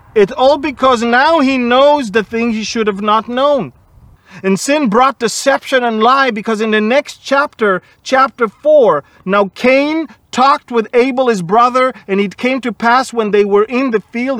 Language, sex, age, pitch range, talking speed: English, male, 40-59, 200-265 Hz, 185 wpm